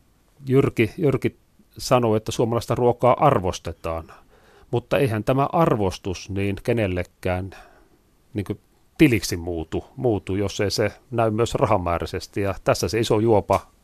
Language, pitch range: Finnish, 95-115 Hz